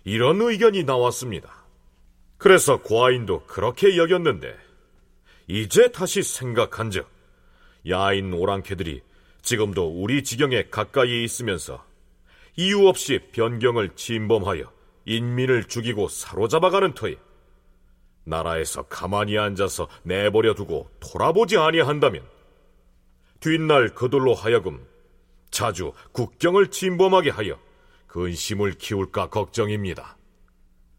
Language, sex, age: Korean, male, 40-59